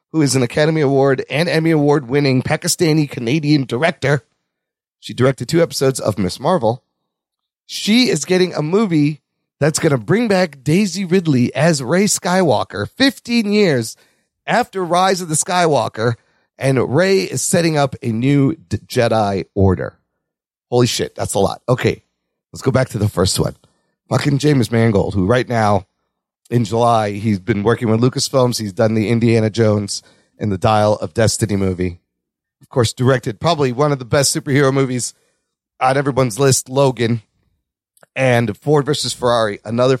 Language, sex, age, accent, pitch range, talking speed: English, male, 40-59, American, 115-160 Hz, 160 wpm